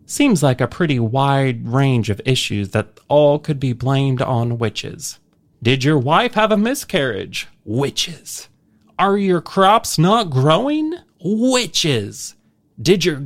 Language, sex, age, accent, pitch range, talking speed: English, male, 30-49, American, 125-185 Hz, 135 wpm